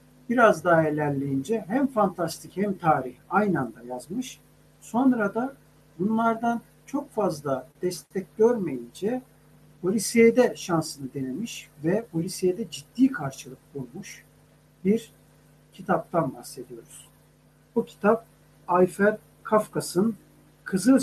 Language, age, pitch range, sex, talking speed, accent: Turkish, 60-79, 145-215 Hz, male, 95 wpm, native